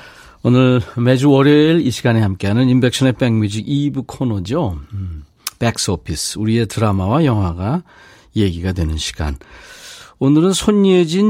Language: Korean